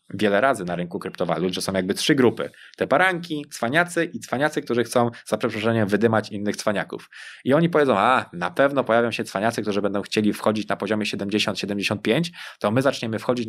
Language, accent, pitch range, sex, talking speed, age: Polish, native, 105-135 Hz, male, 185 wpm, 20-39